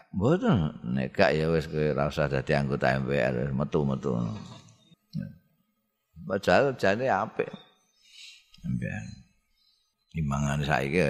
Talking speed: 95 wpm